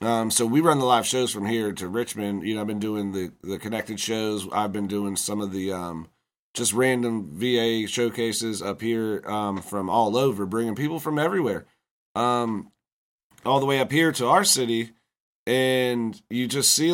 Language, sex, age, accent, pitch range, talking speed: English, male, 30-49, American, 105-130 Hz, 190 wpm